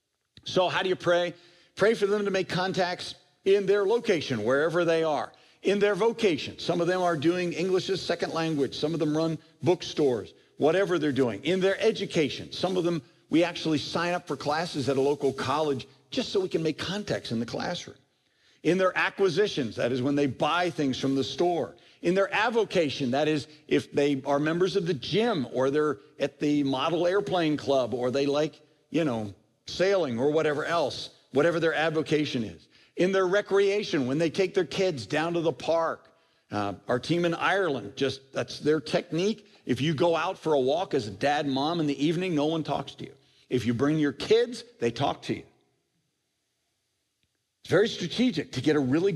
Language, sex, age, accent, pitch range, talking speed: English, male, 50-69, American, 140-185 Hz, 200 wpm